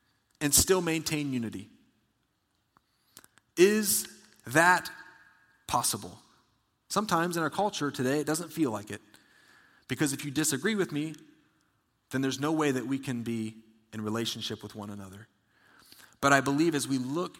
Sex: male